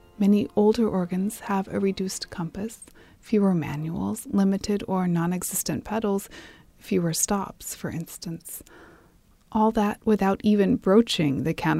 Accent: American